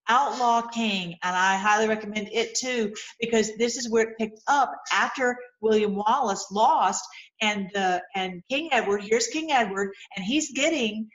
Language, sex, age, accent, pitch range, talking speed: English, female, 50-69, American, 210-265 Hz, 160 wpm